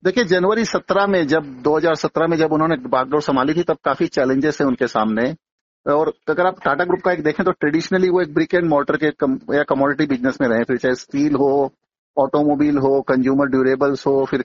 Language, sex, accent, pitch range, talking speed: Hindi, male, native, 135-175 Hz, 205 wpm